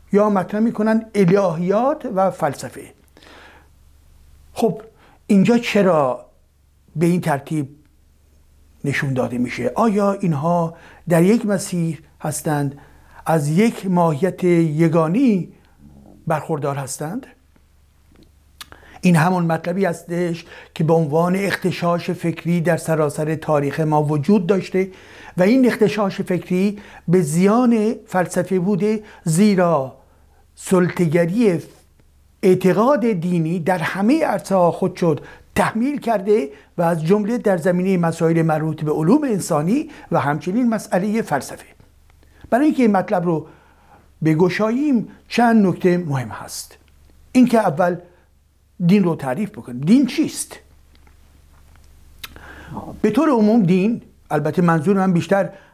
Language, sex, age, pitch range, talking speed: Persian, male, 60-79, 140-200 Hz, 110 wpm